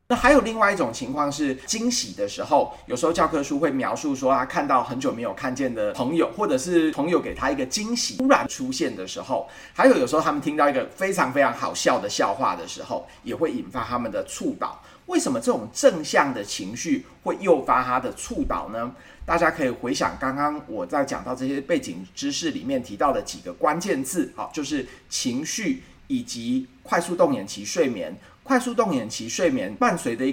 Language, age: Chinese, 30-49